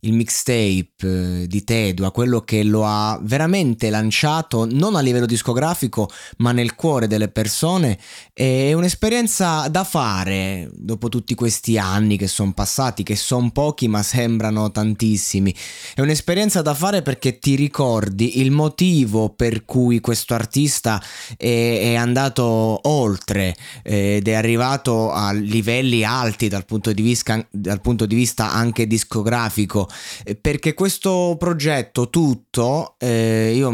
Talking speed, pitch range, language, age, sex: 135 wpm, 110-145 Hz, Italian, 20-39, male